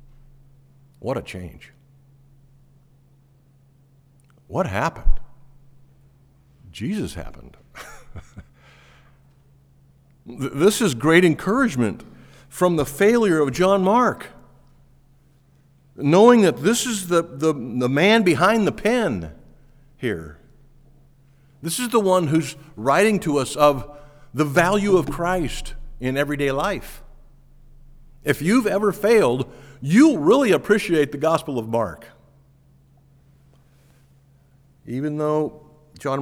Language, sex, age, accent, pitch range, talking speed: English, male, 50-69, American, 125-145 Hz, 100 wpm